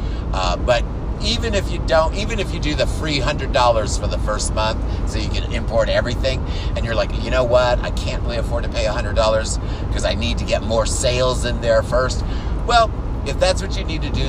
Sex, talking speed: male, 225 wpm